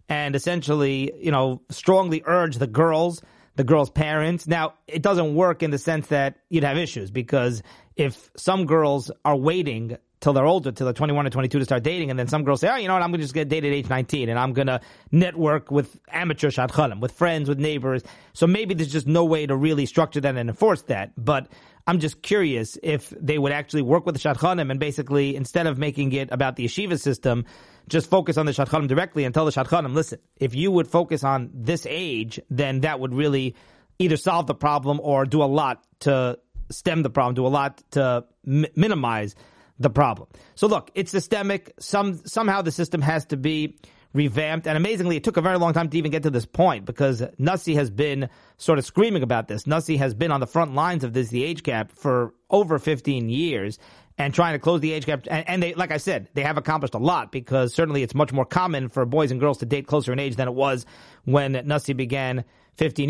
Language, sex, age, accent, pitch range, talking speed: English, male, 30-49, American, 135-165 Hz, 225 wpm